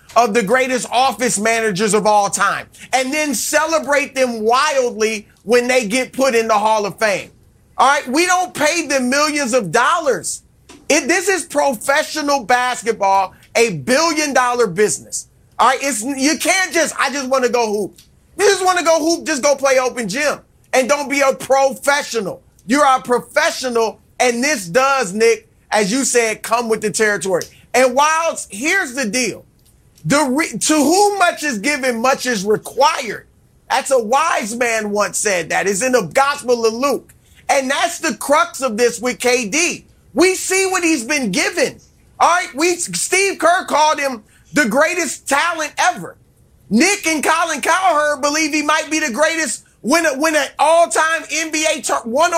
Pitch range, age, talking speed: 240-315 Hz, 30-49, 170 wpm